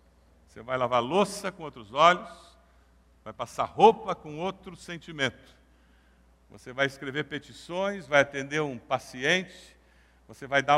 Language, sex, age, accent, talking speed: Portuguese, male, 60-79, Brazilian, 135 wpm